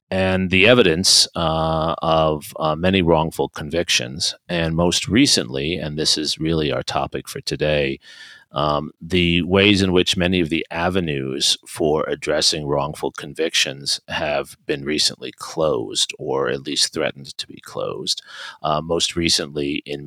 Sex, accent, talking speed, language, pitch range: male, American, 145 wpm, English, 75-85 Hz